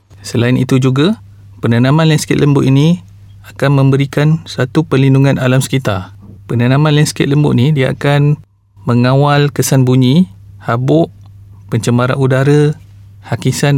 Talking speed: 115 wpm